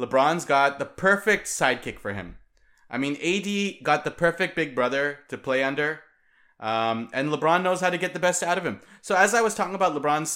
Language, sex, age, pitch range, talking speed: English, male, 30-49, 130-165 Hz, 215 wpm